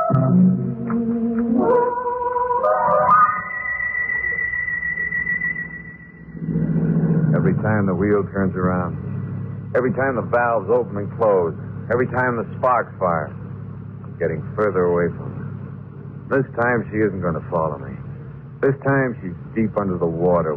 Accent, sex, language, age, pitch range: American, male, English, 60-79, 110-175 Hz